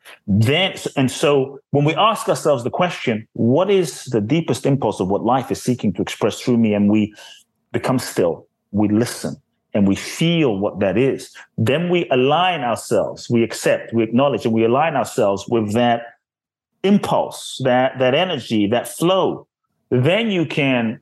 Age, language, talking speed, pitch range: 30-49, English, 165 wpm, 110-155 Hz